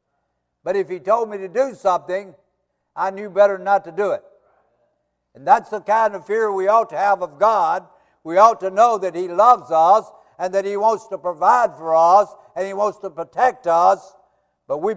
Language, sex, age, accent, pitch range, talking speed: English, male, 60-79, American, 180-210 Hz, 205 wpm